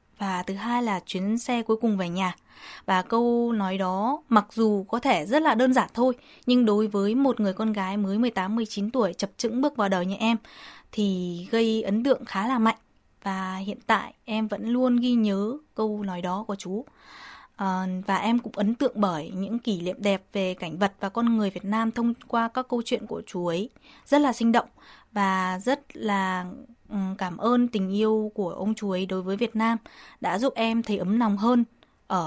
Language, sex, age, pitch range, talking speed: Vietnamese, female, 20-39, 195-240 Hz, 210 wpm